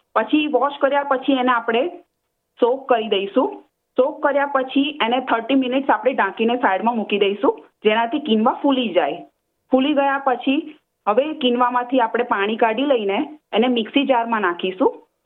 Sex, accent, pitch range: female, native, 220-275 Hz